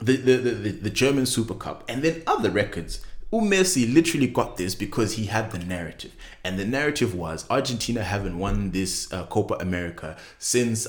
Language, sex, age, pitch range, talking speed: English, male, 20-39, 100-135 Hz, 180 wpm